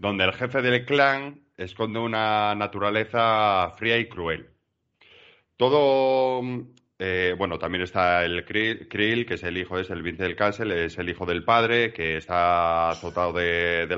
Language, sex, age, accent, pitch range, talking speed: Spanish, male, 30-49, Spanish, 90-115 Hz, 165 wpm